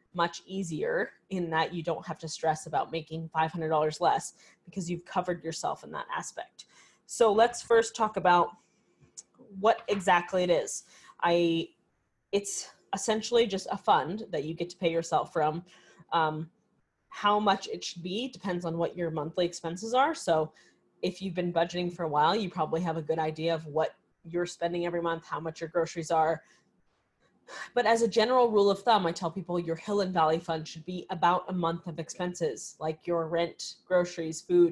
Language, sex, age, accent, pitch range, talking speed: English, female, 20-39, American, 165-185 Hz, 185 wpm